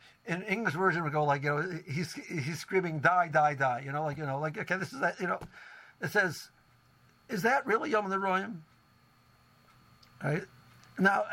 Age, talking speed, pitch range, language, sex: 60-79, 185 wpm, 150-195 Hz, English, male